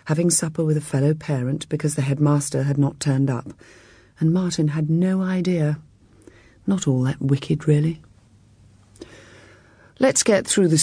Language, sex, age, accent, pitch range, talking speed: English, female, 40-59, British, 135-170 Hz, 150 wpm